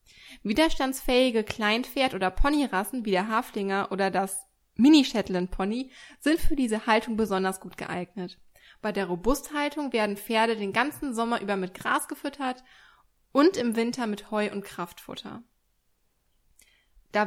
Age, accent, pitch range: 20-39, German, 195-255 Hz